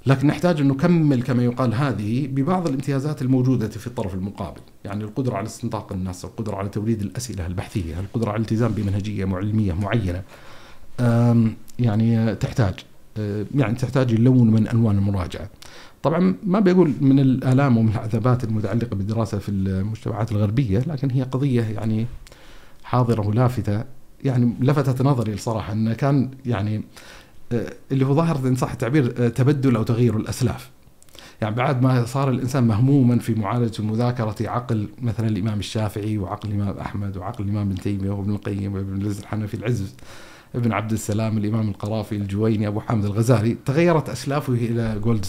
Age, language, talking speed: 50-69, Arabic, 145 wpm